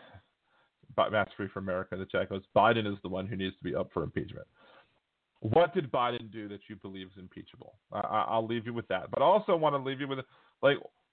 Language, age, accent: English, 30-49, American